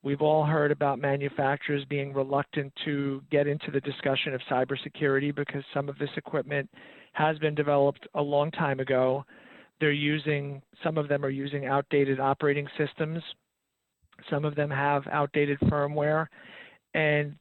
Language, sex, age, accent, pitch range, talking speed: English, male, 40-59, American, 140-155 Hz, 150 wpm